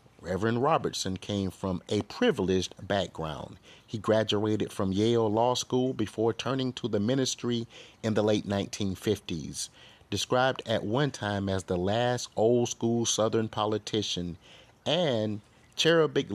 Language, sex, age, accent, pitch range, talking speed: English, male, 30-49, American, 95-115 Hz, 130 wpm